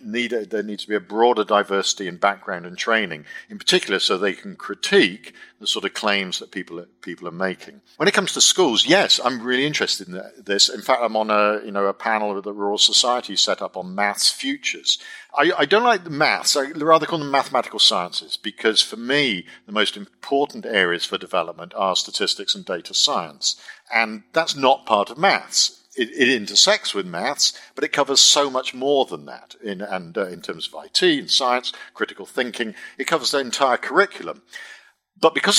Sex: male